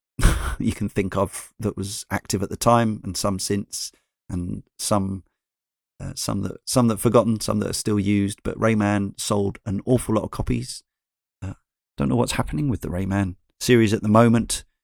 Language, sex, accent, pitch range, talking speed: English, male, British, 95-115 Hz, 185 wpm